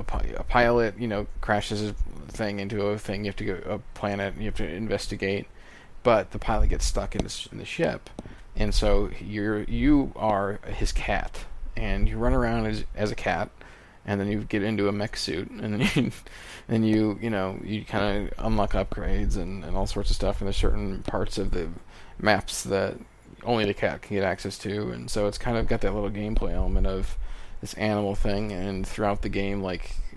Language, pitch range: English, 95-110 Hz